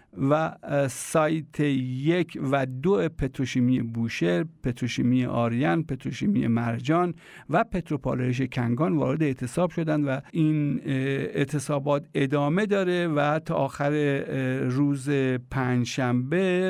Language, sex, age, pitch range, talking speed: German, male, 50-69, 135-160 Hz, 95 wpm